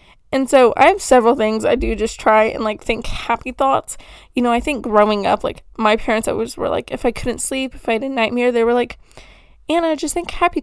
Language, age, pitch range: English, 10-29, 220-270 Hz